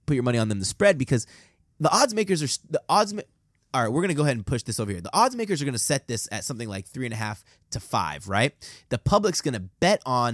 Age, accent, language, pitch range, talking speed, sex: 20-39, American, English, 115-150 Hz, 290 wpm, male